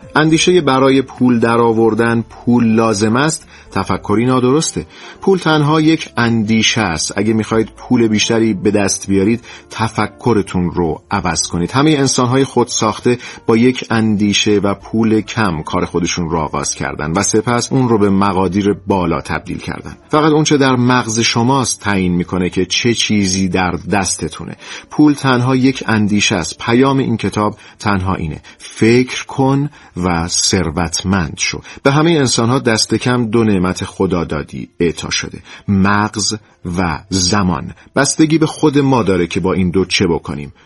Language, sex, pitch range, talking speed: Persian, male, 95-120 Hz, 150 wpm